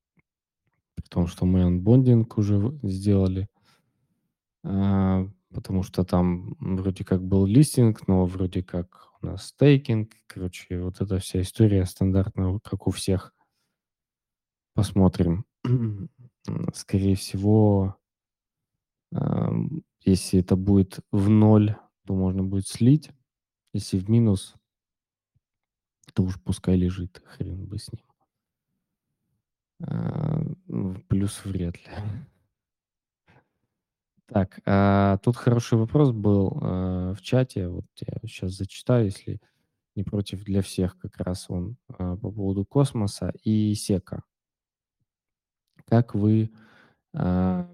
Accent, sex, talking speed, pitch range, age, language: native, male, 105 wpm, 95-120 Hz, 20-39, Russian